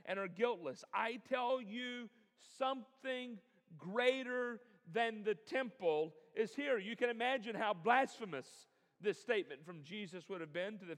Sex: male